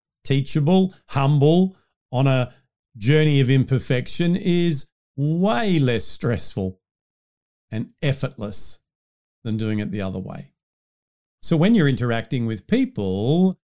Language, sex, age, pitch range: English, male, 50-69, 105-150 Hz